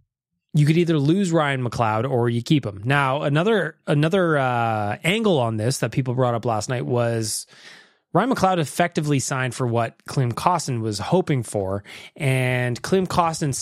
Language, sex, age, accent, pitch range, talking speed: English, male, 20-39, American, 130-170 Hz, 165 wpm